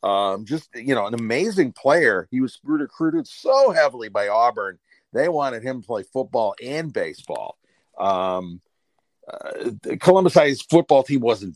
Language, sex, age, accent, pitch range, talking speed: English, male, 40-59, American, 100-135 Hz, 145 wpm